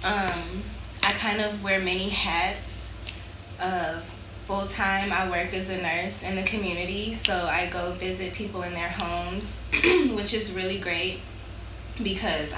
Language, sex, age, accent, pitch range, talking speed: English, female, 10-29, American, 175-205 Hz, 145 wpm